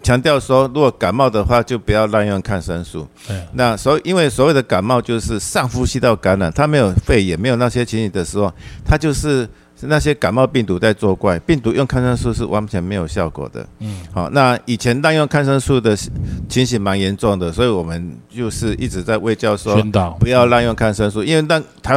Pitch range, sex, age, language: 95-130 Hz, male, 50-69, Chinese